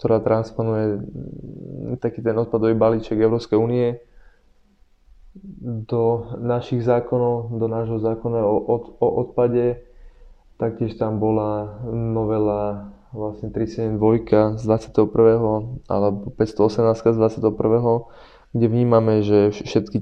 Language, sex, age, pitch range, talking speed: Slovak, male, 20-39, 100-110 Hz, 95 wpm